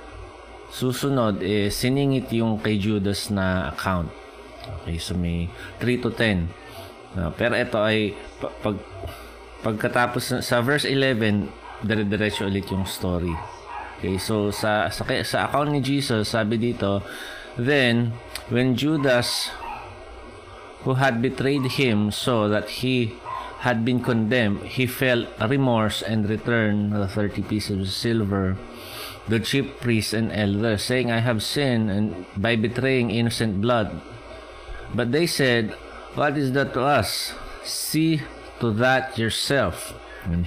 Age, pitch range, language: 20-39, 100-125 Hz, Filipino